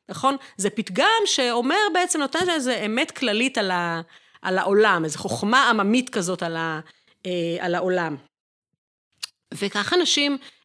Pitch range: 190-255 Hz